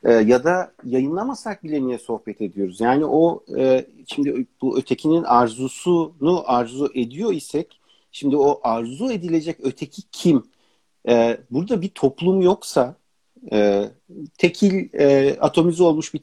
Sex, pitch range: male, 125-170 Hz